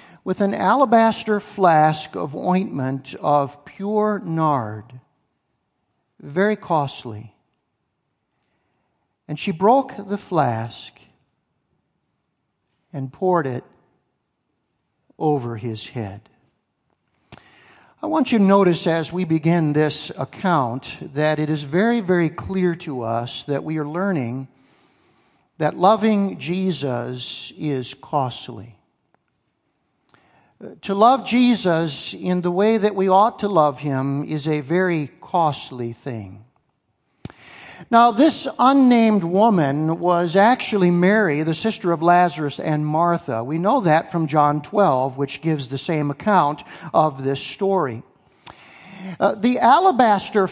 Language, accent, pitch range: English, American, 140-200 Hz